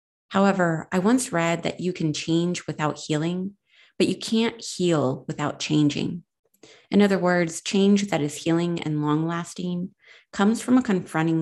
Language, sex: English, female